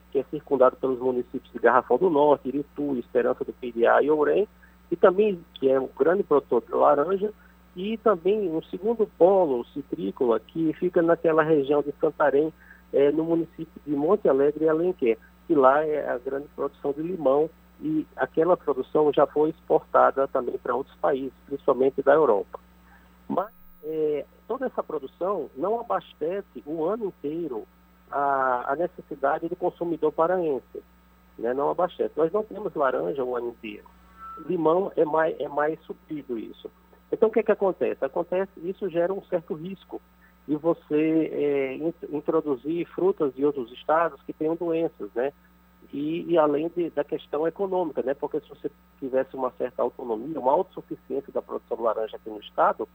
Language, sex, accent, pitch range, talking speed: Portuguese, male, Brazilian, 135-180 Hz, 165 wpm